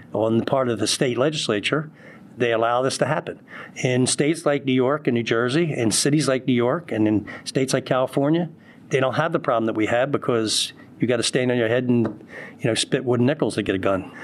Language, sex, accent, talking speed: English, male, American, 235 wpm